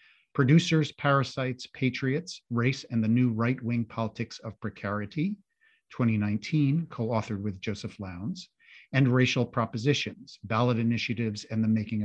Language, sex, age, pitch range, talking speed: English, male, 50-69, 110-145 Hz, 120 wpm